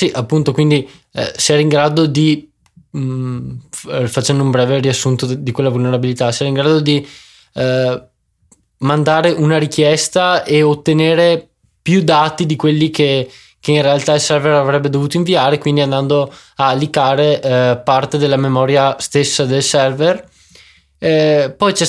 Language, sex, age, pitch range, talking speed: Italian, male, 20-39, 130-155 Hz, 150 wpm